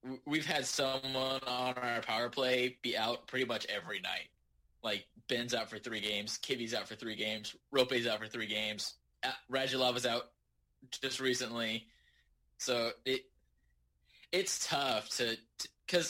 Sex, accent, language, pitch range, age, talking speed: male, American, English, 115-145 Hz, 20-39, 150 wpm